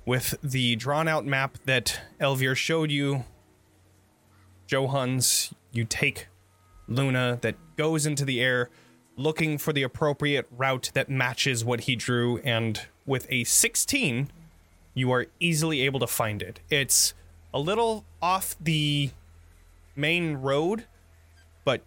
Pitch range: 110-145 Hz